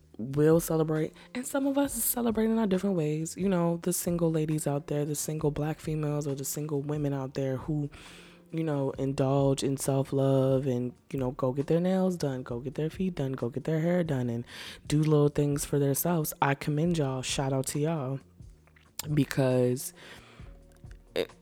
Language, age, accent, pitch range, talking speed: English, 20-39, American, 130-160 Hz, 190 wpm